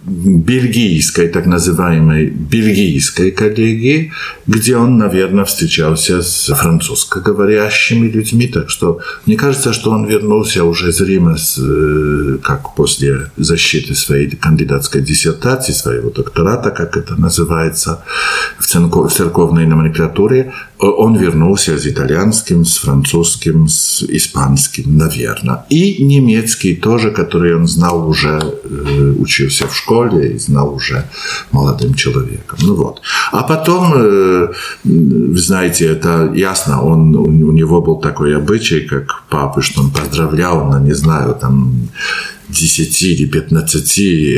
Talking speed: 115 wpm